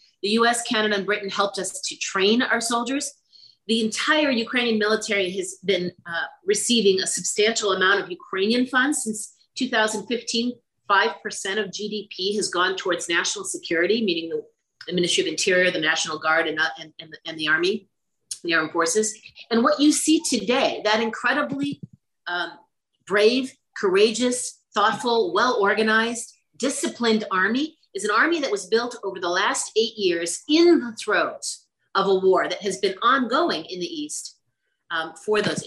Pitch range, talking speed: 190-270 Hz, 155 wpm